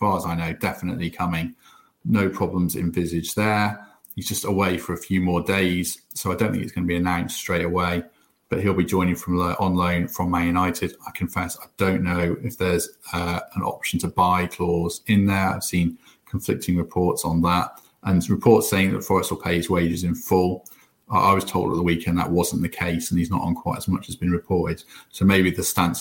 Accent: British